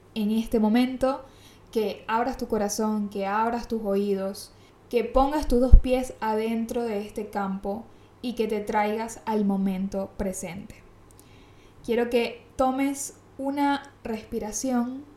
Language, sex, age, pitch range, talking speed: Spanish, female, 20-39, 200-245 Hz, 125 wpm